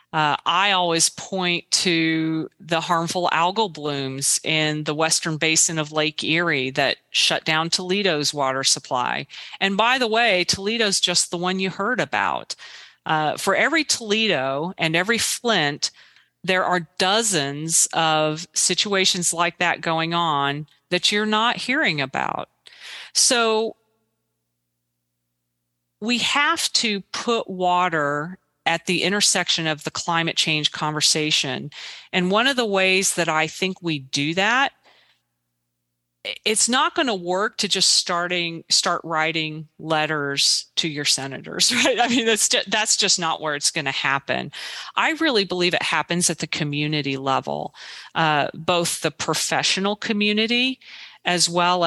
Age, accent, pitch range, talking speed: 40-59, American, 150-190 Hz, 140 wpm